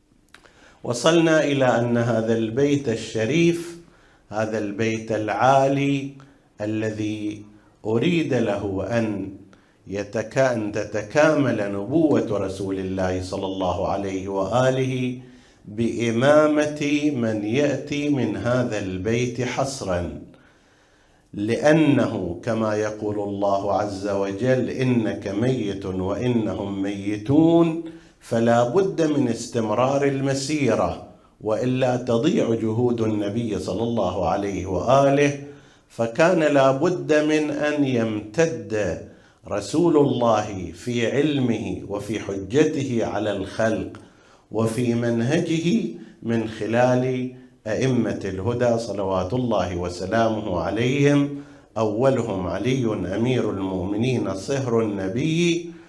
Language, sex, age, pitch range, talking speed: Arabic, male, 50-69, 105-140 Hz, 85 wpm